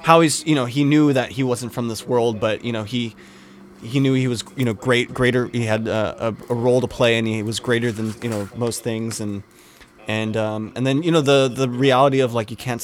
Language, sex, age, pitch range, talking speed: English, male, 20-39, 110-125 Hz, 255 wpm